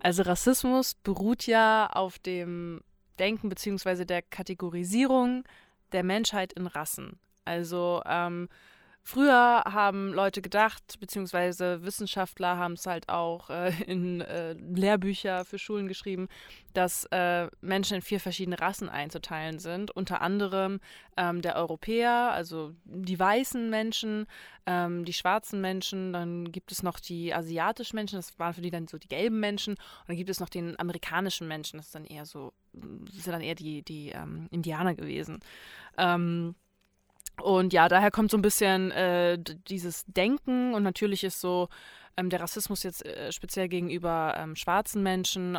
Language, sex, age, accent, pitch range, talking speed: English, female, 20-39, German, 170-195 Hz, 155 wpm